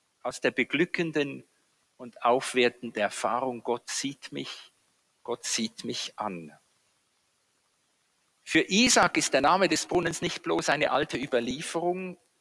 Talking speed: 120 wpm